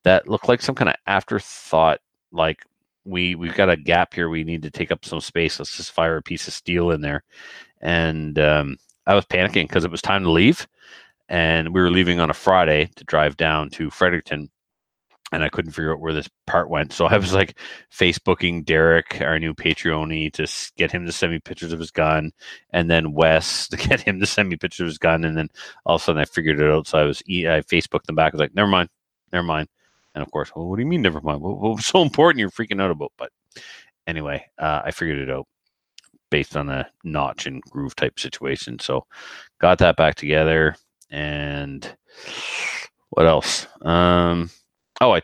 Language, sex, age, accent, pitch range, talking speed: English, male, 30-49, American, 75-90 Hz, 215 wpm